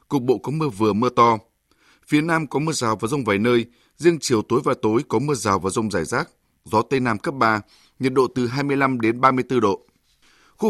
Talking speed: 230 wpm